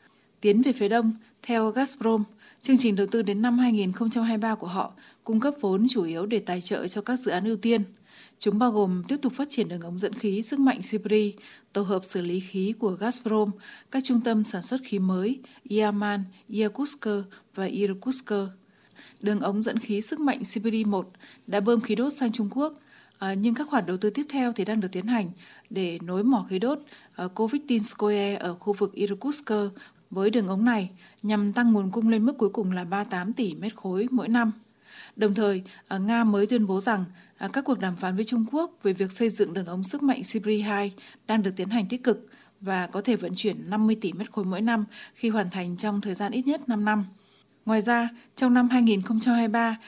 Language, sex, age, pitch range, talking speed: Vietnamese, female, 20-39, 200-235 Hz, 210 wpm